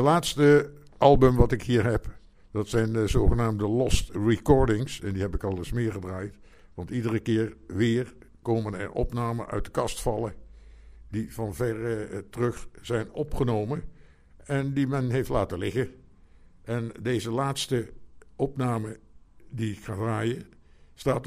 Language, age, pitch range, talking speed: Dutch, 60-79, 105-135 Hz, 150 wpm